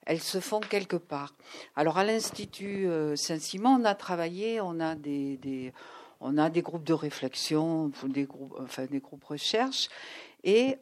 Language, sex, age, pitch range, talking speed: French, female, 60-79, 155-215 Hz, 160 wpm